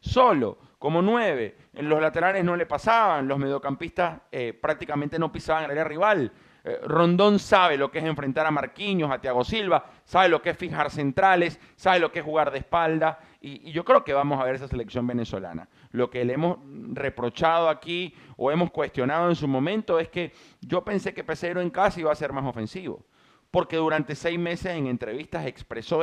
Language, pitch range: Spanish, 135-175 Hz